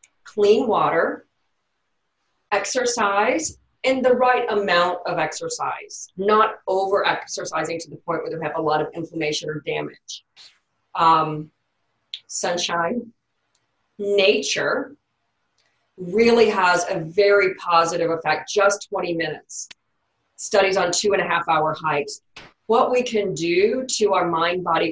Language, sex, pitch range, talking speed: English, female, 170-220 Hz, 110 wpm